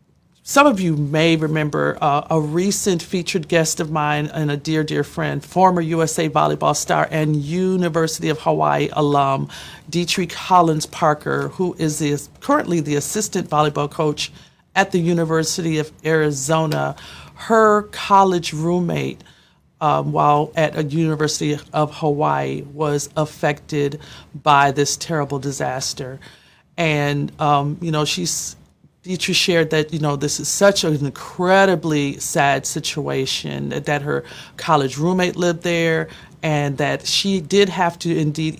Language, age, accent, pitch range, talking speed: English, 40-59, American, 145-170 Hz, 140 wpm